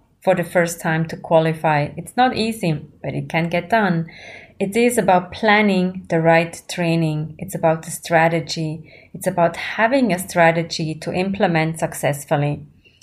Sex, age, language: female, 30-49, English